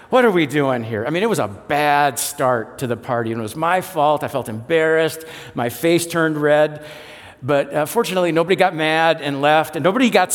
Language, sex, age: English, male, 50-69